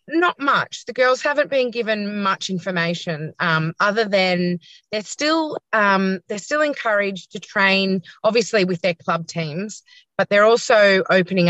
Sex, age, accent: female, 30-49, Australian